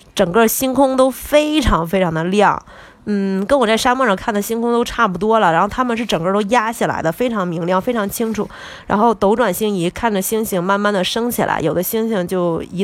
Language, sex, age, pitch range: Chinese, female, 20-39, 185-235 Hz